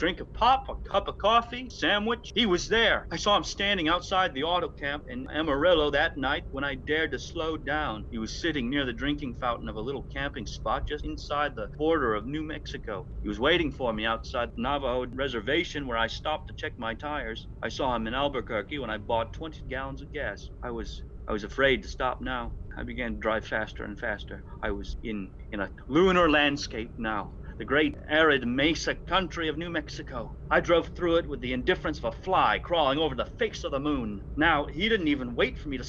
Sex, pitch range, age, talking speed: male, 110-170 Hz, 40-59, 220 wpm